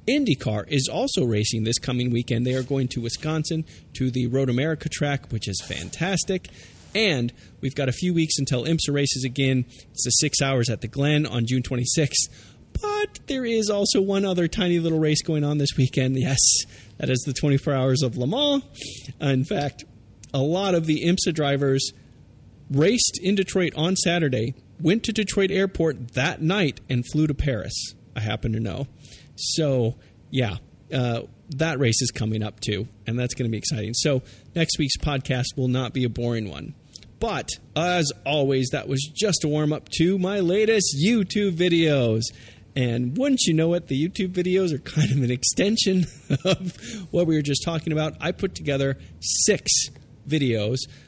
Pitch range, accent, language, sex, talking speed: 125-165 Hz, American, English, male, 180 wpm